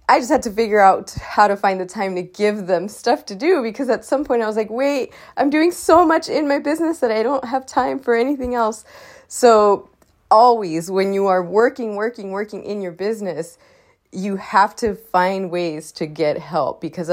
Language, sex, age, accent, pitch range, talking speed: English, female, 20-39, American, 170-240 Hz, 210 wpm